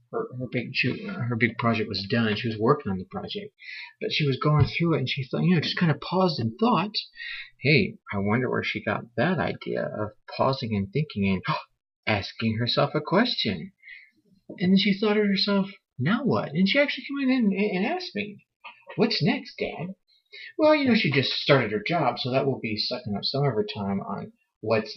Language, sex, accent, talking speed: English, male, American, 205 wpm